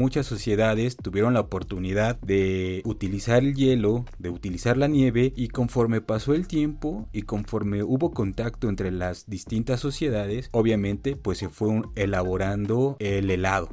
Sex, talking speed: male, 145 wpm